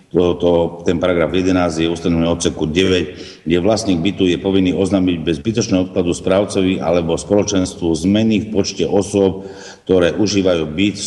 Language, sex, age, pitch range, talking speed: Slovak, male, 60-79, 85-95 Hz, 150 wpm